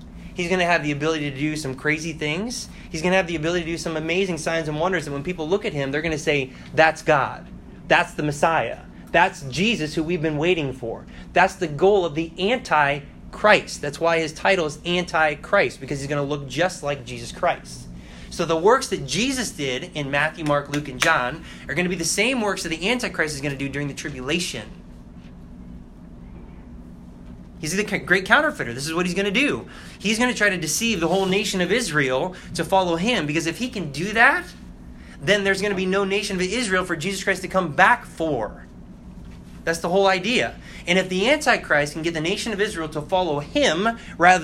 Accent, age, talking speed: American, 20-39, 215 wpm